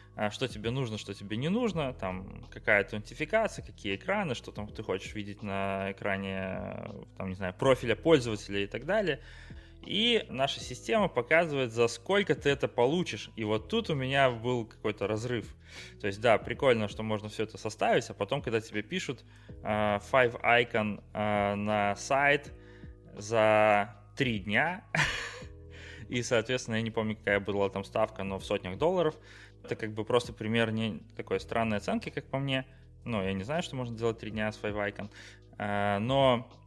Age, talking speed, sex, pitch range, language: 20-39, 160 wpm, male, 100-120 Hz, Russian